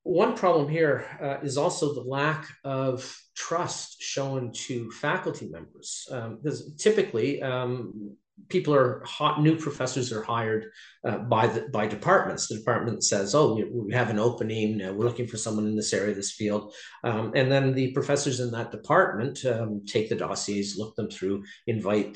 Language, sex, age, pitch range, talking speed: English, male, 40-59, 110-140 Hz, 170 wpm